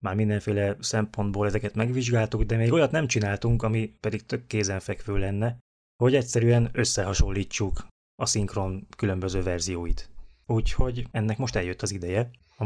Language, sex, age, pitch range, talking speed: Hungarian, male, 20-39, 100-115 Hz, 140 wpm